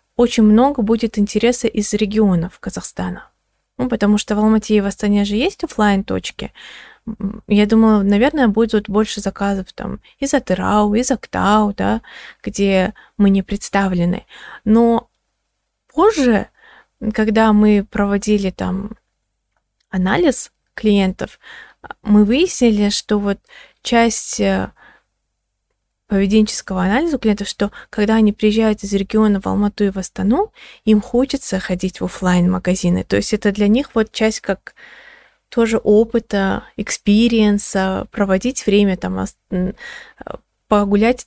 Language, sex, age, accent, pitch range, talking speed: Russian, female, 20-39, native, 195-225 Hz, 120 wpm